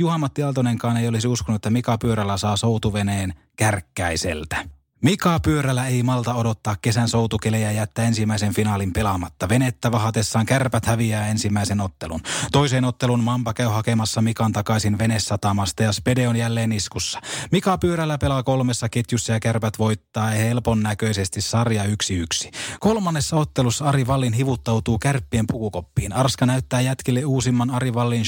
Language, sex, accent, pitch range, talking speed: Finnish, male, native, 110-130 Hz, 140 wpm